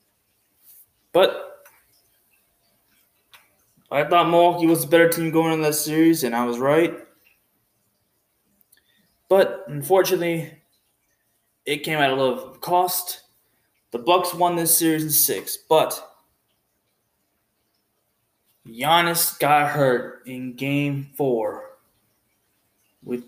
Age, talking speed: 20-39, 105 wpm